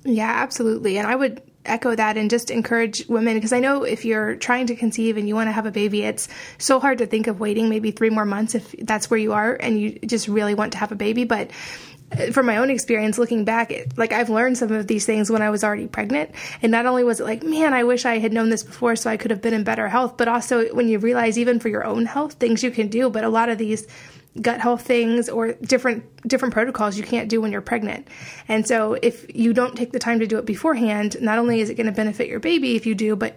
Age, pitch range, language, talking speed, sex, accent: 20-39, 215-235 Hz, English, 270 wpm, female, American